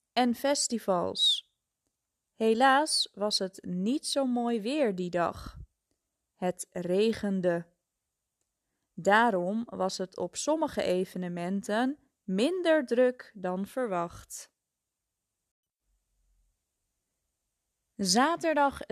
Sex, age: female, 20-39